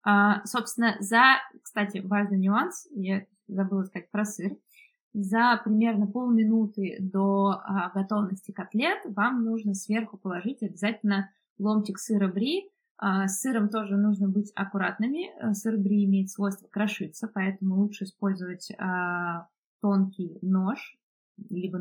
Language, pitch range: Russian, 195-225 Hz